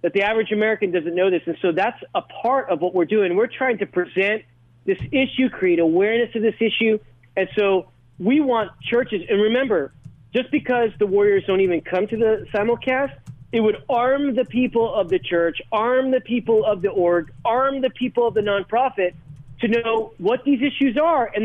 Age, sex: 40-59, male